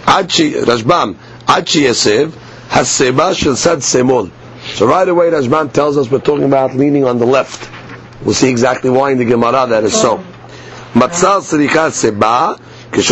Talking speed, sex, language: 90 wpm, male, English